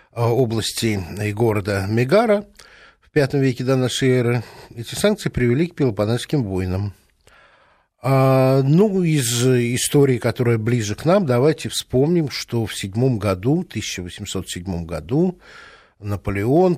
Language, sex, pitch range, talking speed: Russian, male, 100-150 Hz, 120 wpm